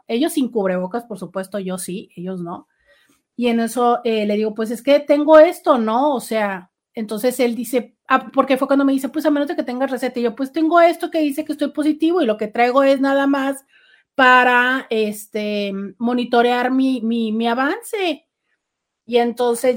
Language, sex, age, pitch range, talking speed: Spanish, female, 40-59, 200-260 Hz, 205 wpm